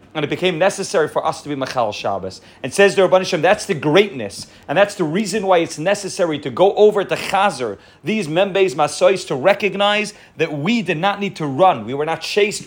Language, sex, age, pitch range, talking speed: English, male, 30-49, 150-195 Hz, 215 wpm